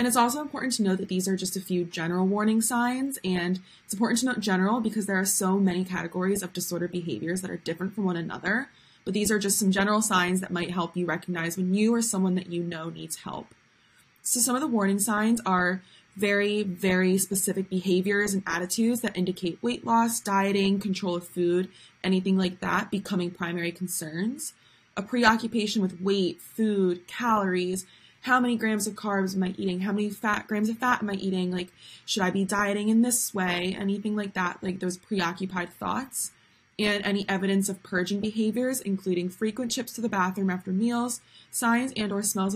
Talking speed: 195 wpm